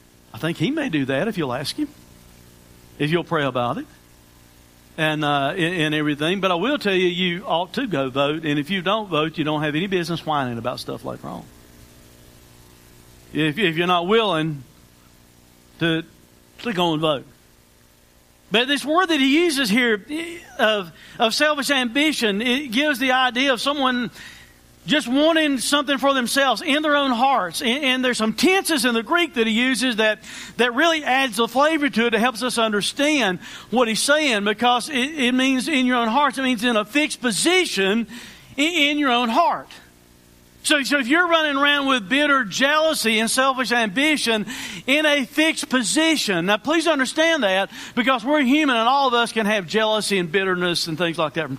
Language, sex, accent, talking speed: English, male, American, 185 wpm